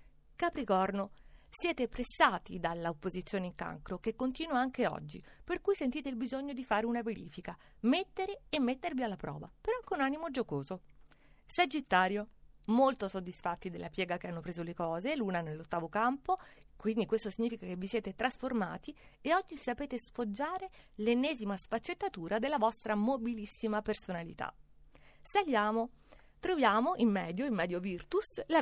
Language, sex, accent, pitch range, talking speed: Italian, female, native, 200-270 Hz, 140 wpm